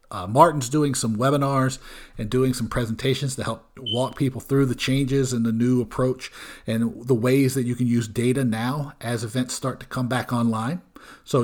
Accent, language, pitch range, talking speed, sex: American, English, 115-140 Hz, 195 wpm, male